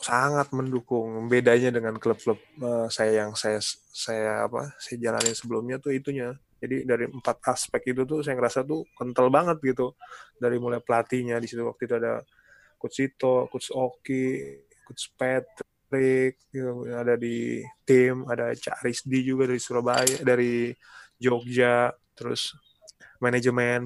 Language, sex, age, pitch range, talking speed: Indonesian, male, 20-39, 120-130 Hz, 135 wpm